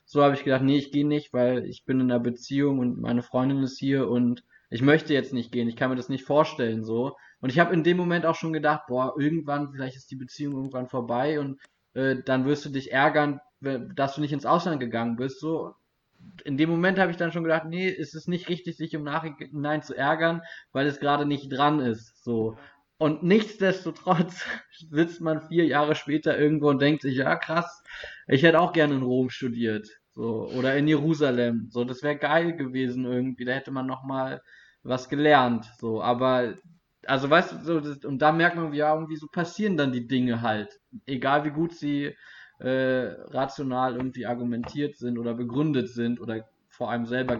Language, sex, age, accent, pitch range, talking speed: German, male, 20-39, German, 125-155 Hz, 205 wpm